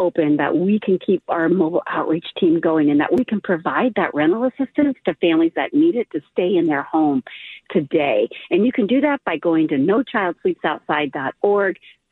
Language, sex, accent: English, female, American